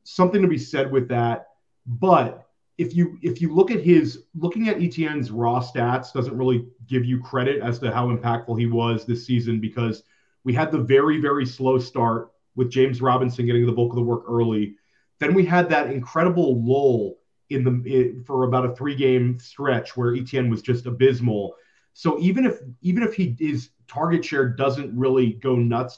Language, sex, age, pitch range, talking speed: English, male, 30-49, 120-140 Hz, 190 wpm